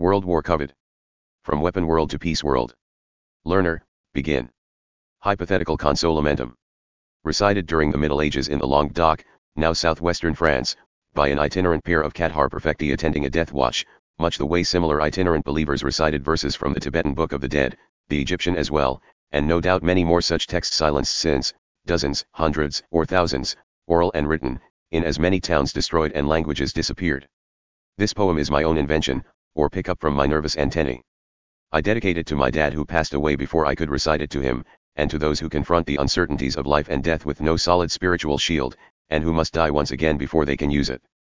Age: 40-59